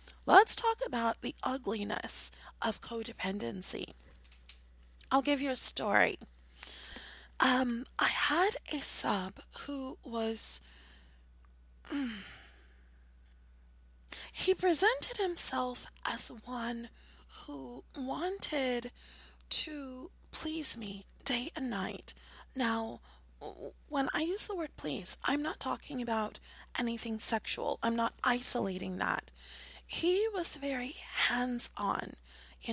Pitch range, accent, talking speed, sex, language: 205-275 Hz, American, 105 wpm, female, English